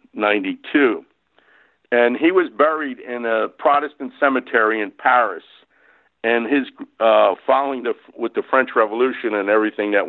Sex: male